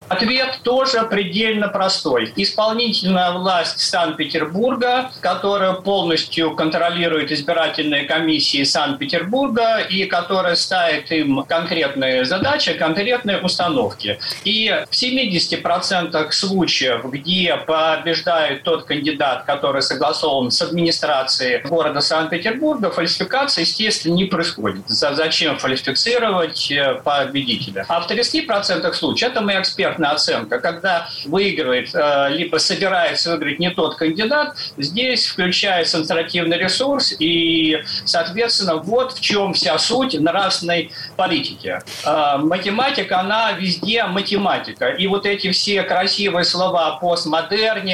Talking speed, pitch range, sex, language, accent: 105 wpm, 160-200 Hz, male, Russian, native